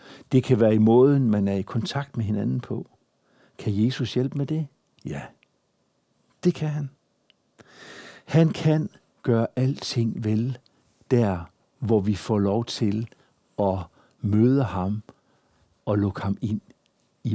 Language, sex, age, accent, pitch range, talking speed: Danish, male, 60-79, native, 105-135 Hz, 140 wpm